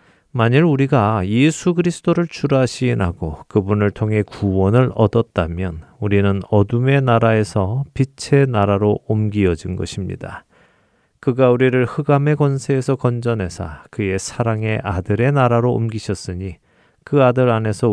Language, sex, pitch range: Korean, male, 95-130 Hz